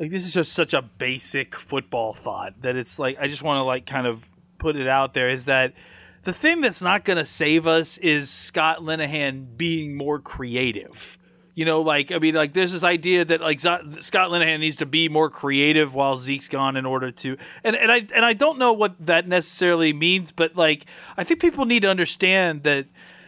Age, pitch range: 30-49, 150-190 Hz